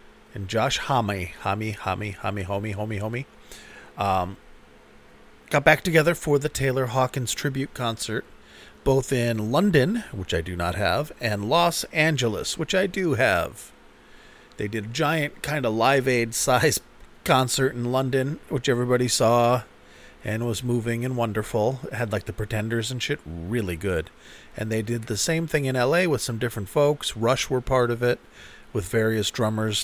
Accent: American